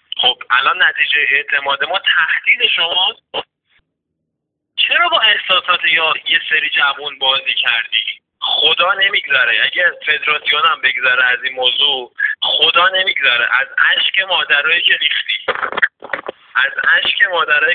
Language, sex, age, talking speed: Persian, male, 30-49, 120 wpm